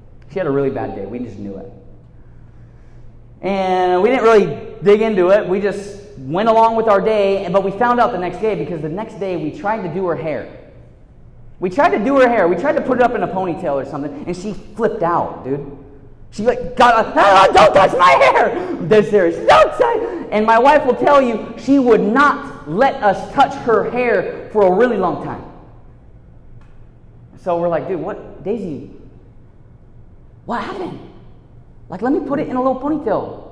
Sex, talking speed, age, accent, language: male, 200 wpm, 20-39, American, English